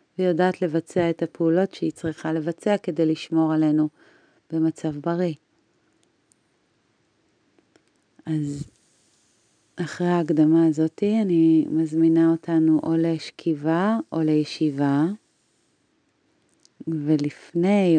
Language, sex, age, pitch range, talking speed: Hebrew, female, 30-49, 160-190 Hz, 80 wpm